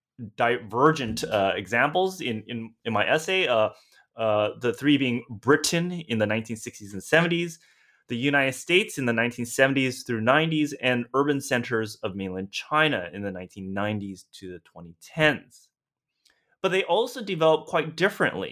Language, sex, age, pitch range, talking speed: English, male, 20-39, 115-150 Hz, 145 wpm